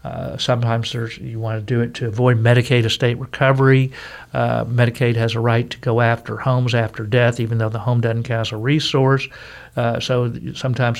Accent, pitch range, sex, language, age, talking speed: American, 115-135 Hz, male, English, 50-69, 190 wpm